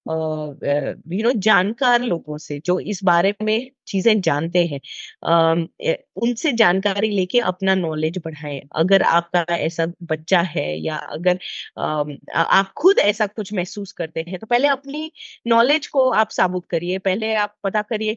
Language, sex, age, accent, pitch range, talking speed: Hindi, female, 30-49, native, 185-265 Hz, 160 wpm